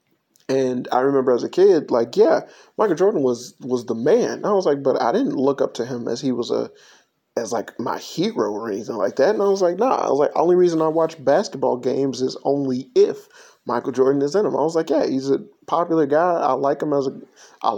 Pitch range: 130-170 Hz